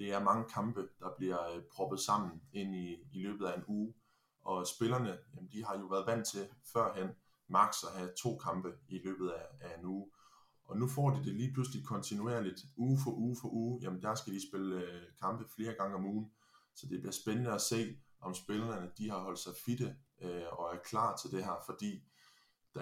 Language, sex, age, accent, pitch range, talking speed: Danish, male, 20-39, native, 95-115 Hz, 205 wpm